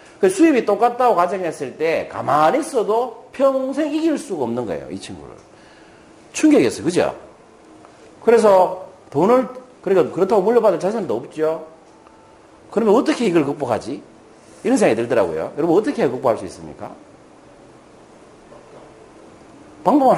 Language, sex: Korean, male